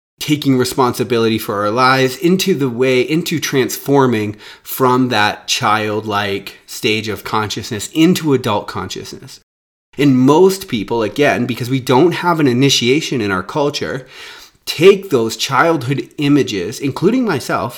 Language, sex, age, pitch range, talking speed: English, male, 30-49, 110-145 Hz, 130 wpm